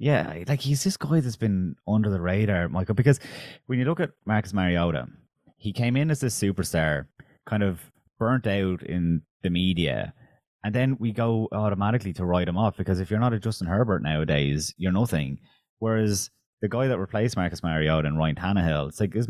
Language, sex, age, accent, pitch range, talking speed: English, male, 20-39, Irish, 85-110 Hz, 195 wpm